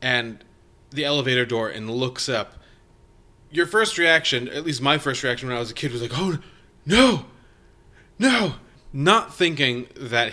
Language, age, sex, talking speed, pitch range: English, 30-49, male, 165 wpm, 115-135 Hz